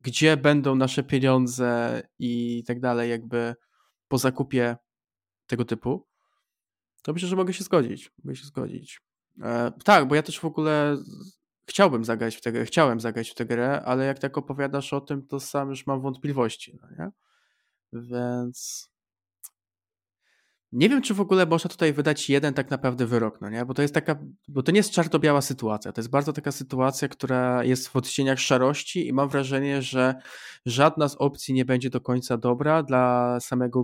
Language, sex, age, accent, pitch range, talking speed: Polish, male, 20-39, native, 120-140 Hz, 170 wpm